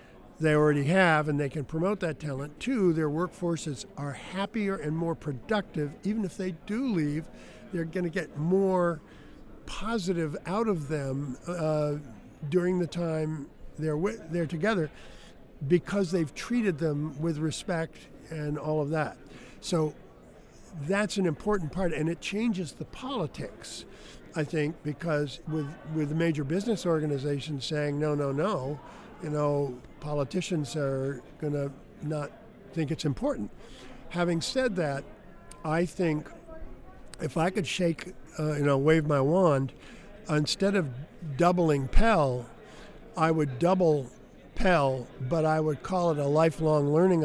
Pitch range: 145-180 Hz